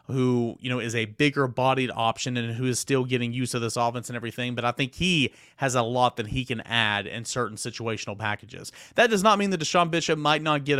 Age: 30-49